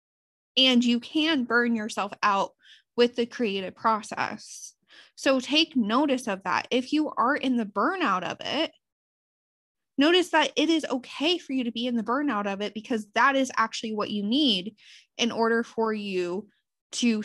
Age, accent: 20-39, American